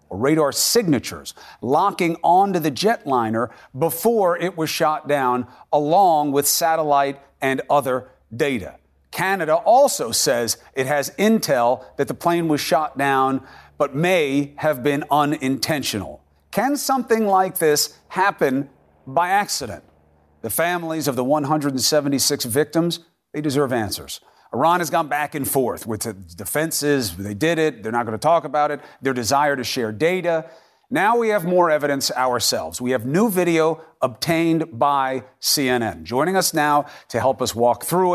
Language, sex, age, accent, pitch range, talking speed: English, male, 40-59, American, 135-170 Hz, 150 wpm